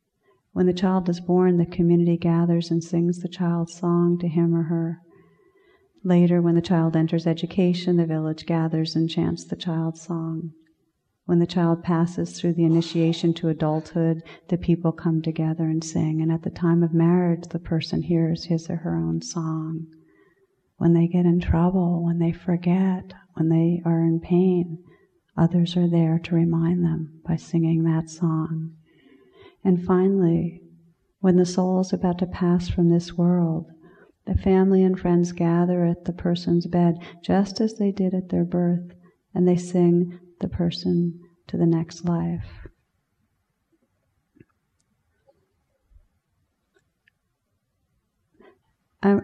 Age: 40-59